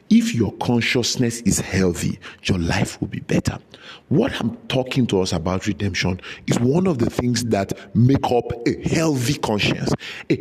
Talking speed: 165 wpm